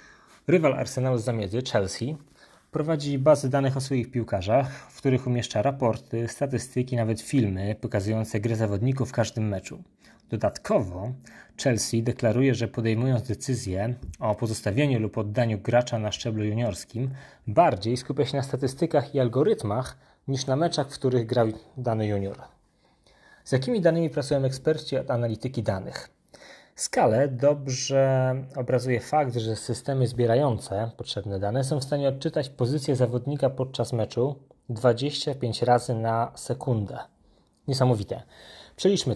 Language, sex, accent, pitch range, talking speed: Polish, male, native, 115-140 Hz, 130 wpm